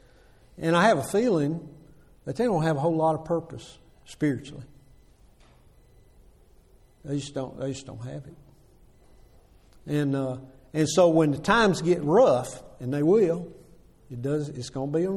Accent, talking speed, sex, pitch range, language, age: American, 165 wpm, male, 135-170 Hz, English, 60-79